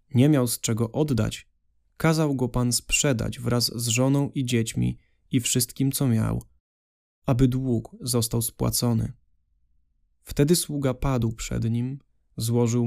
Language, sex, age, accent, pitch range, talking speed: Polish, male, 20-39, native, 110-130 Hz, 130 wpm